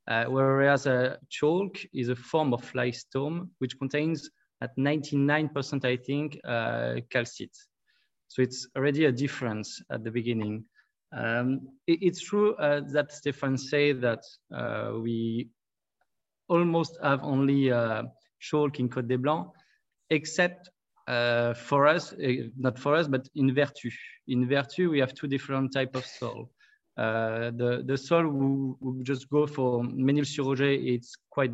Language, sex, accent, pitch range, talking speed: English, male, French, 125-150 Hz, 150 wpm